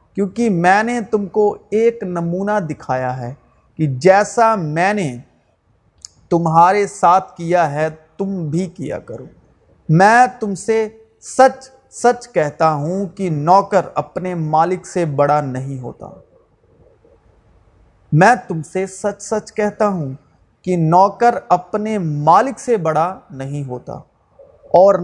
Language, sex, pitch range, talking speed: Urdu, male, 150-210 Hz, 120 wpm